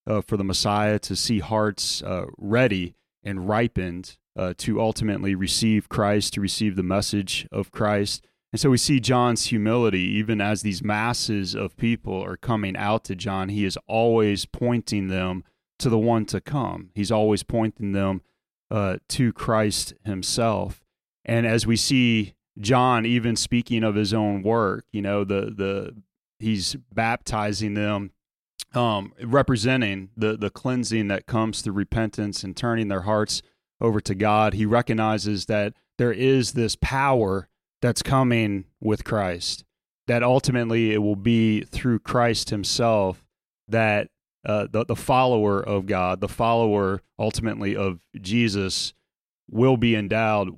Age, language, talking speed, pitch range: 30-49, English, 150 wpm, 100-115 Hz